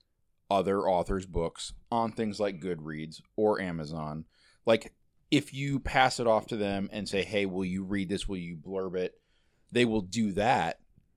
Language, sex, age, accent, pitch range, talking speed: English, male, 30-49, American, 90-115 Hz, 170 wpm